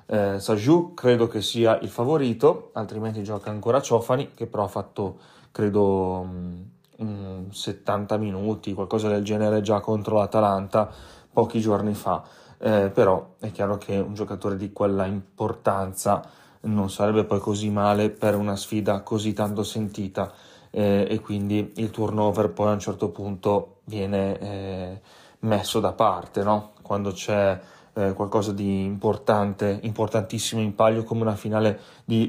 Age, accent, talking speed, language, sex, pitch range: 20-39, native, 140 wpm, Italian, male, 100-115 Hz